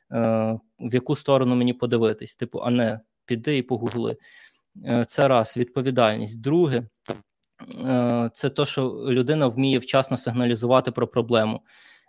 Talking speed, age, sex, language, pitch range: 135 wpm, 20-39, male, Ukrainian, 120-135 Hz